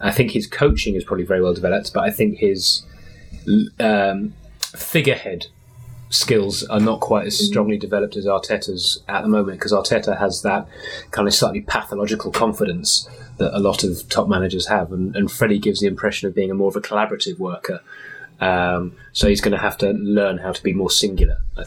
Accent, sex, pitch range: British, male, 100-120 Hz